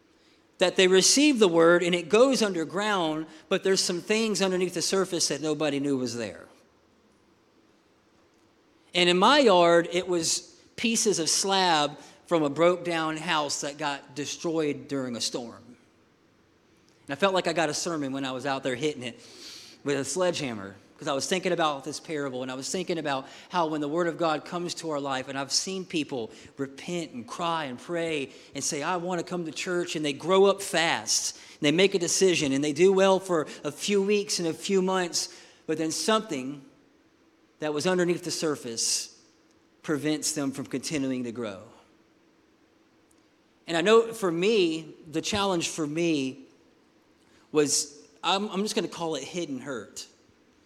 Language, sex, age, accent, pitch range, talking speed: English, male, 40-59, American, 145-185 Hz, 180 wpm